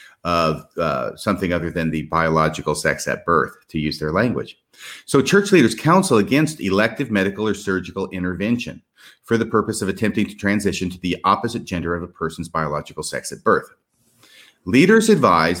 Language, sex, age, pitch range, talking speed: English, male, 40-59, 85-120 Hz, 170 wpm